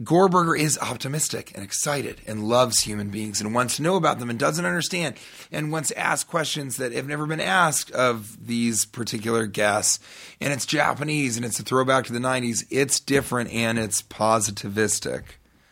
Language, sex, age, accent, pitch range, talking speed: English, male, 30-49, American, 105-135 Hz, 180 wpm